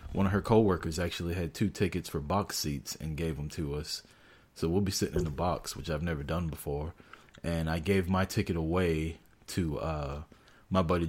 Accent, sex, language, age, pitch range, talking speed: American, male, English, 30-49, 80-105 Hz, 205 wpm